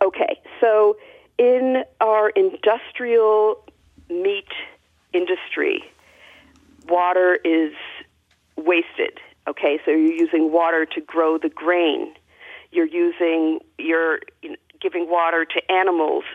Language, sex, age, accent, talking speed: English, female, 50-69, American, 95 wpm